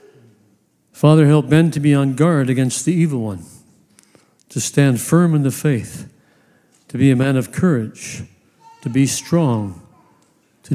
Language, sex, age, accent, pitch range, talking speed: English, male, 60-79, American, 125-160 Hz, 150 wpm